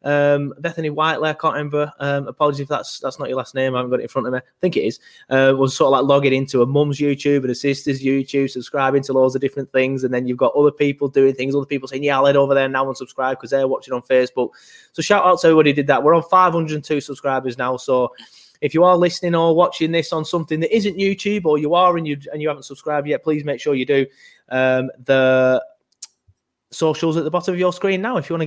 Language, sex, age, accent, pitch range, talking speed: English, male, 20-39, British, 130-165 Hz, 275 wpm